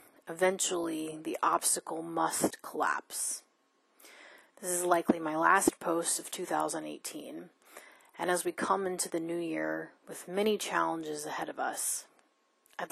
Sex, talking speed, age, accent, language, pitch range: female, 130 wpm, 30-49, American, English, 160-180 Hz